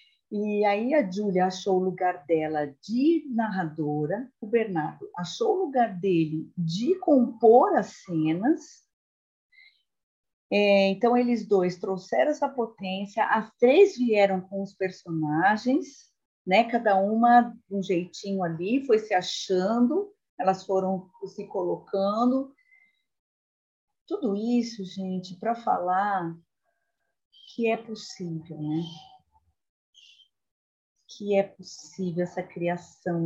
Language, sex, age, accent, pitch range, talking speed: Portuguese, female, 40-59, Brazilian, 175-240 Hz, 110 wpm